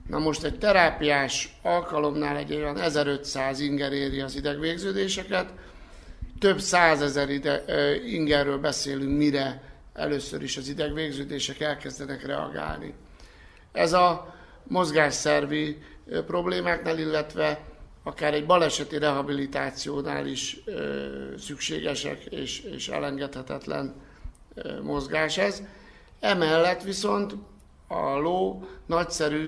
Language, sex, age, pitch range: Hungarian, male, 60-79, 140-160 Hz